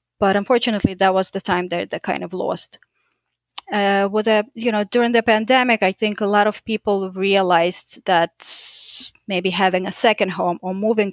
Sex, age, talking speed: female, 20-39, 185 wpm